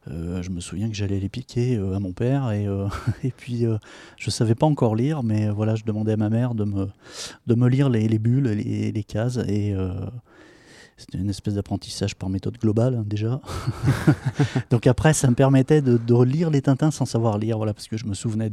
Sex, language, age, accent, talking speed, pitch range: male, French, 30-49, French, 235 wpm, 100-120 Hz